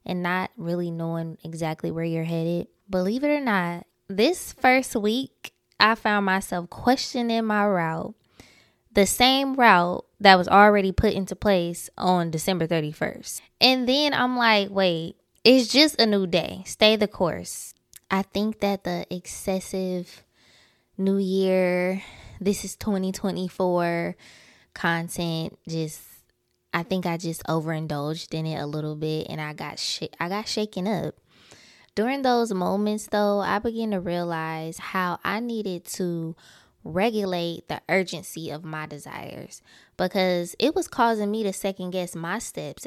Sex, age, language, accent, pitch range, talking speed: female, 10-29, English, American, 170-210 Hz, 145 wpm